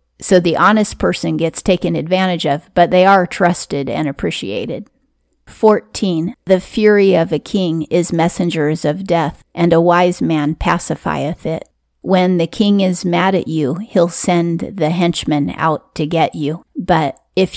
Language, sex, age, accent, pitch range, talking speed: English, female, 40-59, American, 160-185 Hz, 160 wpm